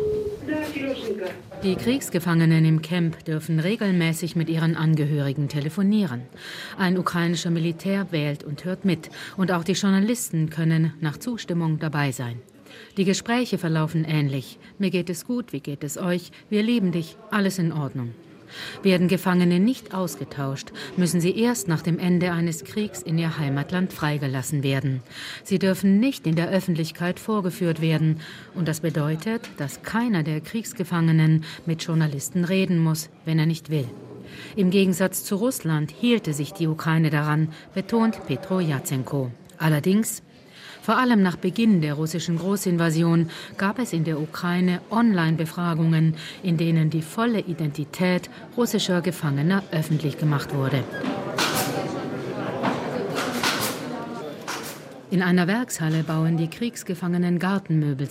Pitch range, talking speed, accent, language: 155-190 Hz, 130 wpm, German, German